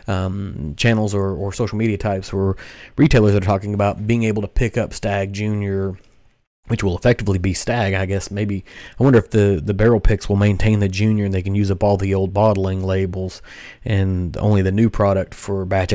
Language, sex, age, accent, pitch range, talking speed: English, male, 30-49, American, 95-115 Hz, 205 wpm